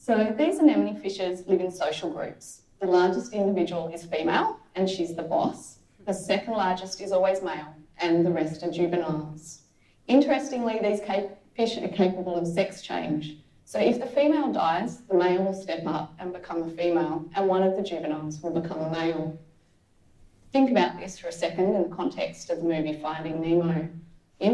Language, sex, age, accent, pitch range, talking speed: English, female, 20-39, Australian, 165-200 Hz, 185 wpm